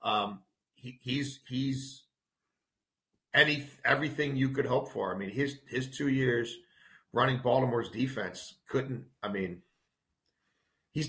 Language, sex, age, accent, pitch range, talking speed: English, male, 40-59, American, 125-150 Hz, 125 wpm